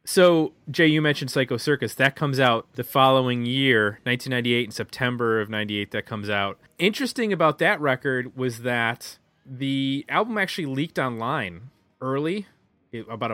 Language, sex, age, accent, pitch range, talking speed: English, male, 30-49, American, 115-140 Hz, 150 wpm